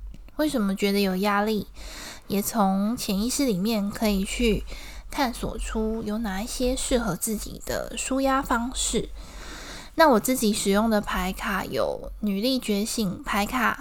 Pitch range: 205-250 Hz